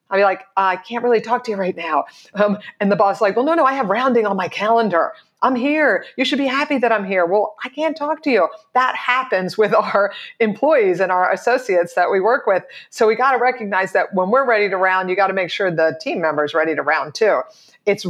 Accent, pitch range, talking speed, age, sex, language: American, 175-225 Hz, 260 wpm, 50-69, female, English